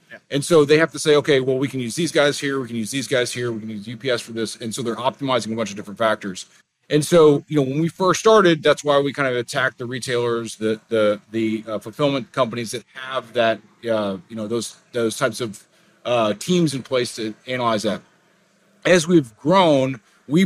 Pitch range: 115-145 Hz